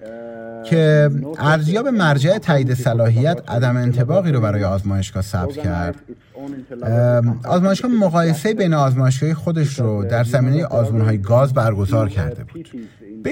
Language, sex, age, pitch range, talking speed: Persian, male, 30-49, 110-155 Hz, 120 wpm